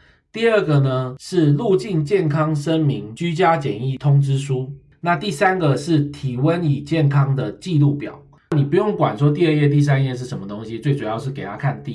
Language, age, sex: Chinese, 20-39, male